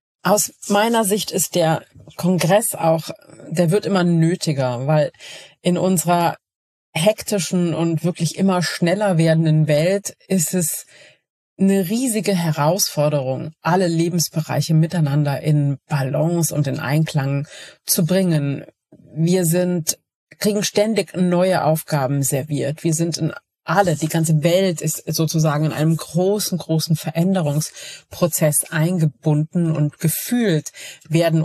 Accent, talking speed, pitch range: German, 115 wpm, 150-180 Hz